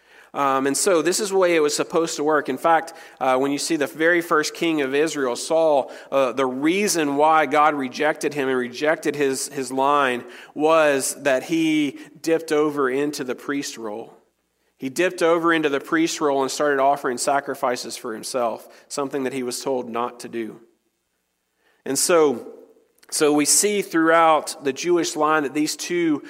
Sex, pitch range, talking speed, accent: male, 135-165 Hz, 180 wpm, American